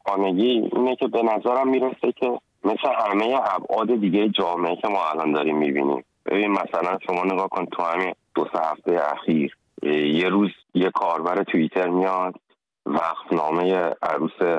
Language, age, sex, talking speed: Persian, 30-49, male, 155 wpm